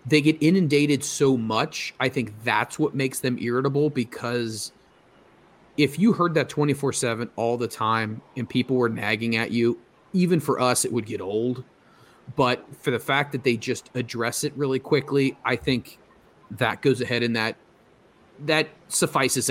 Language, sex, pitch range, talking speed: English, male, 120-145 Hz, 170 wpm